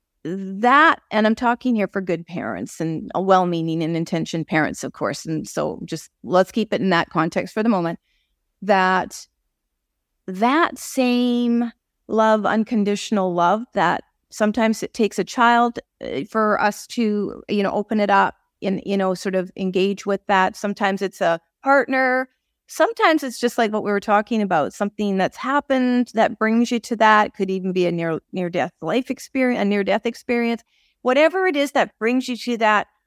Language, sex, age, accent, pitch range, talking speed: English, female, 40-59, American, 185-235 Hz, 180 wpm